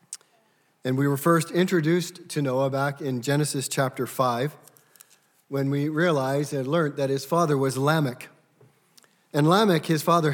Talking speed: 150 wpm